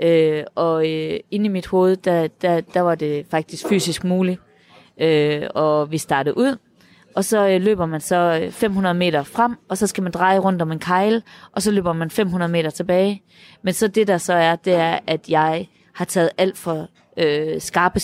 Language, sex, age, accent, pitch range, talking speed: Danish, female, 20-39, native, 160-200 Hz, 205 wpm